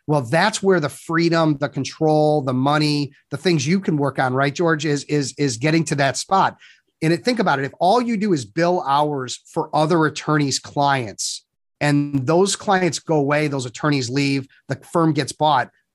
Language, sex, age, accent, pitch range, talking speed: English, male, 30-49, American, 140-170 Hz, 195 wpm